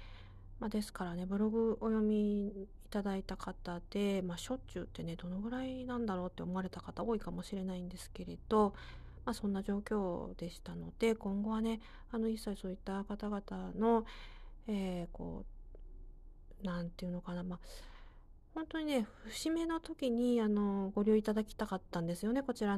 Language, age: Japanese, 40-59